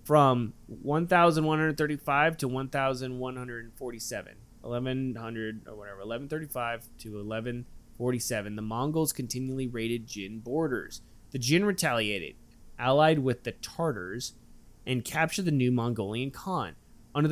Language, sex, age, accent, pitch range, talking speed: English, male, 20-39, American, 115-145 Hz, 160 wpm